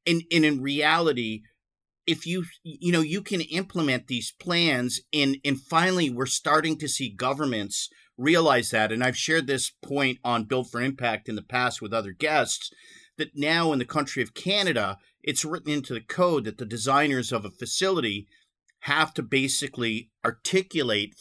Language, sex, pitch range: English, male, 125-155 Hz